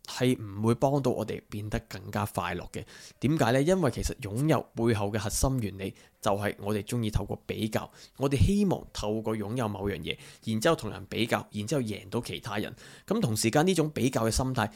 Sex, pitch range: male, 105-125 Hz